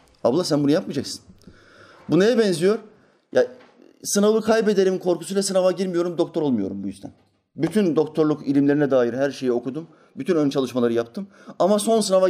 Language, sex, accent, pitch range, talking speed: Turkish, male, native, 130-210 Hz, 150 wpm